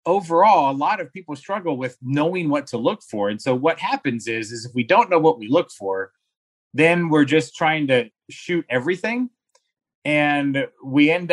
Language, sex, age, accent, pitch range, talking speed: English, male, 30-49, American, 120-160 Hz, 190 wpm